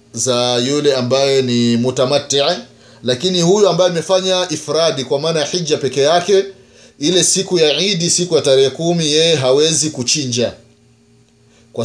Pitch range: 125-155 Hz